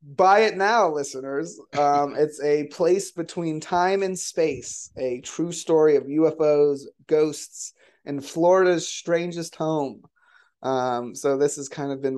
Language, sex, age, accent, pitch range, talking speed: English, male, 30-49, American, 130-150 Hz, 145 wpm